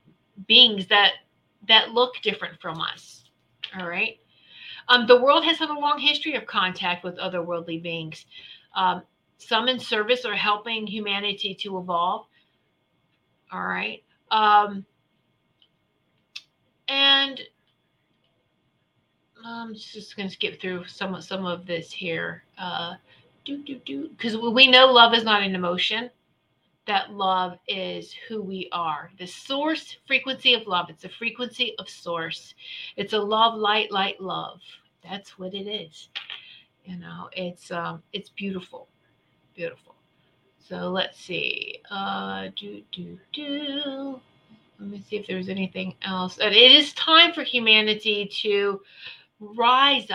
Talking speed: 135 wpm